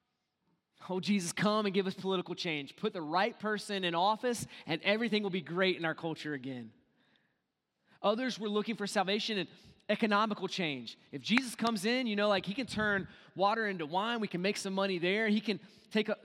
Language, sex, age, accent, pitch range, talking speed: English, male, 20-39, American, 180-230 Hz, 195 wpm